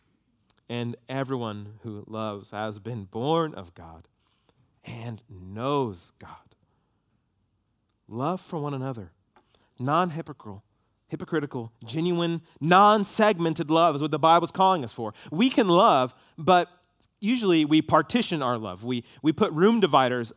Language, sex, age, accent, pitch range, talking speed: English, male, 30-49, American, 115-180 Hz, 125 wpm